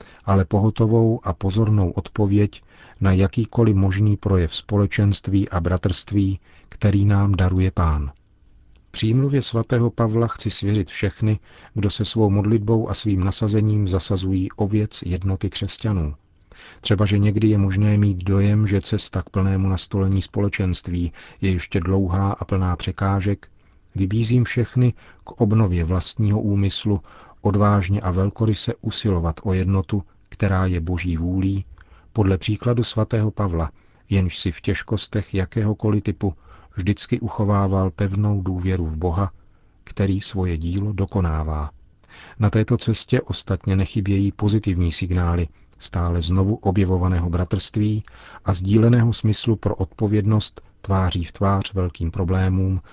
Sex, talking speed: male, 125 wpm